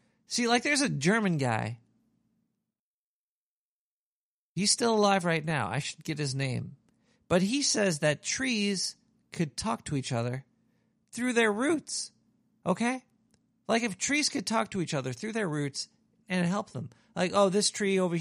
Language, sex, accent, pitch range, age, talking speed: English, male, American, 155-220 Hz, 40-59, 160 wpm